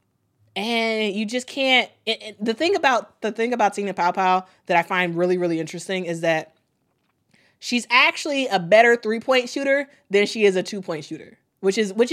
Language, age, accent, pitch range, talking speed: English, 20-39, American, 155-210 Hz, 185 wpm